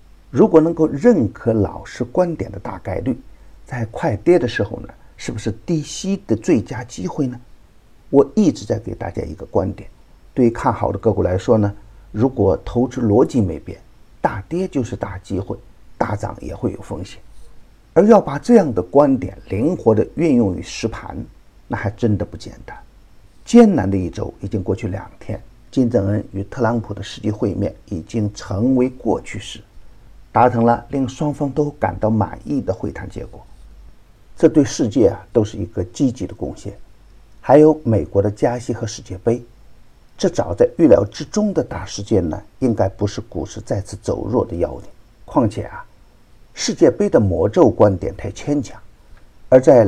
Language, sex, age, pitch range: Chinese, male, 50-69, 100-130 Hz